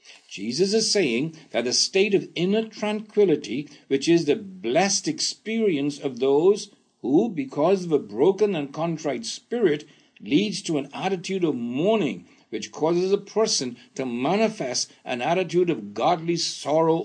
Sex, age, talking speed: male, 60-79, 145 wpm